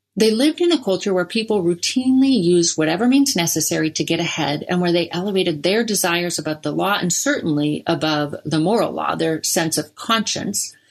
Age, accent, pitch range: 40-59, American, 160-210 Hz